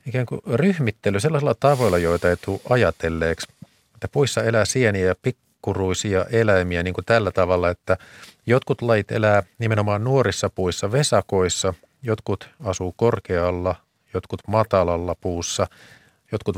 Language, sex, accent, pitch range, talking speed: Finnish, male, native, 90-115 Hz, 125 wpm